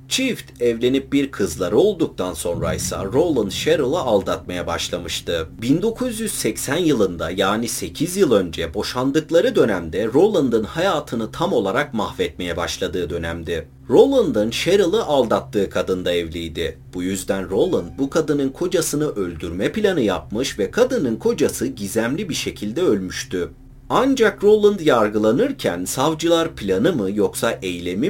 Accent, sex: native, male